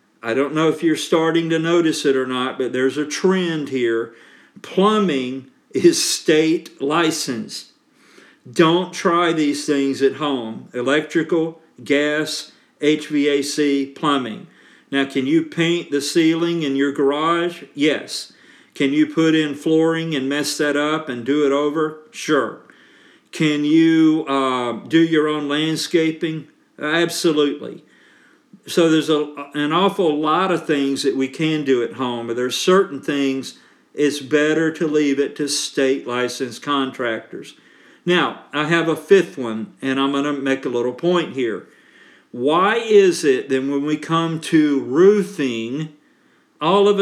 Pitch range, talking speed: 140-165 Hz, 145 wpm